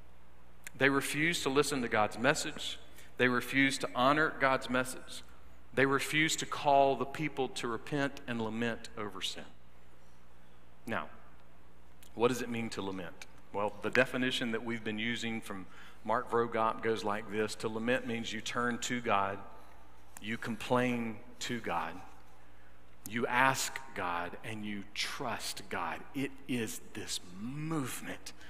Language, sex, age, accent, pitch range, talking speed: English, male, 40-59, American, 100-150 Hz, 140 wpm